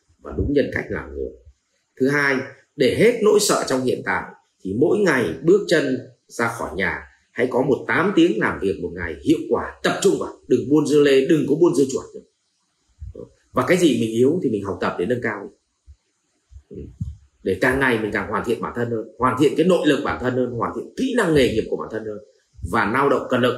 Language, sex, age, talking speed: Vietnamese, male, 30-49, 235 wpm